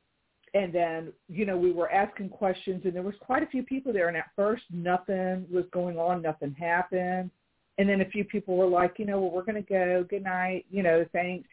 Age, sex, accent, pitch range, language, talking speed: 50-69, female, American, 155-185 Hz, English, 230 wpm